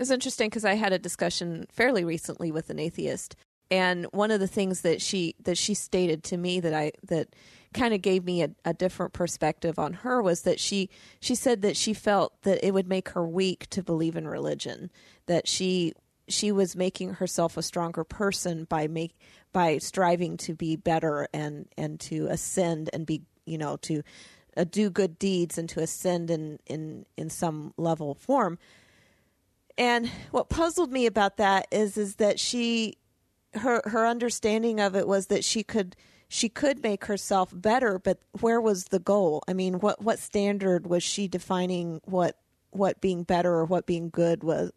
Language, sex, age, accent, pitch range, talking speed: English, female, 30-49, American, 170-210 Hz, 190 wpm